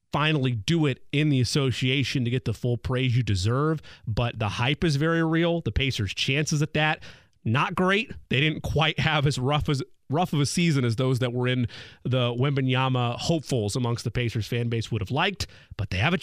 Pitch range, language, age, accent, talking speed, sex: 115-145 Hz, English, 30-49, American, 210 wpm, male